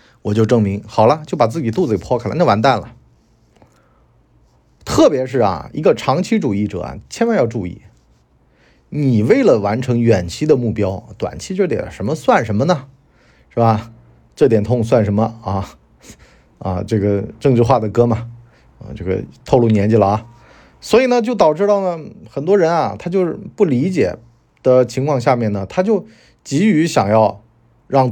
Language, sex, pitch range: Chinese, male, 105-140 Hz